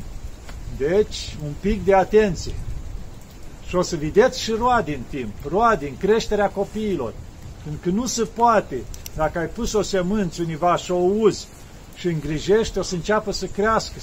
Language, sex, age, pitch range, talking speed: Romanian, male, 50-69, 155-205 Hz, 160 wpm